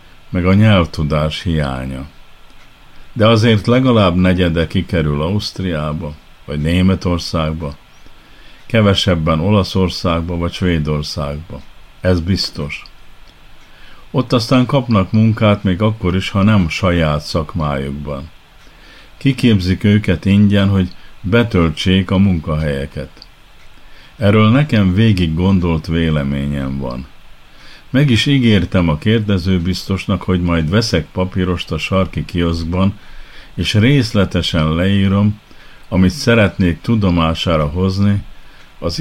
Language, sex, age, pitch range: Hungarian, male, 50-69, 80-100 Hz